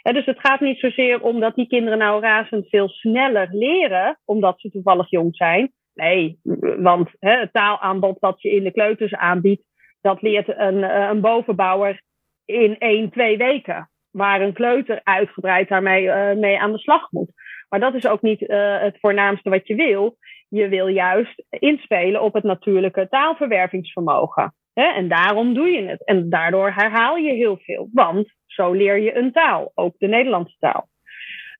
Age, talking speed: 30-49, 175 wpm